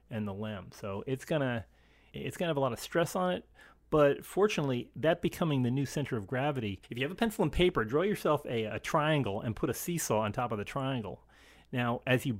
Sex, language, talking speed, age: male, English, 230 wpm, 30-49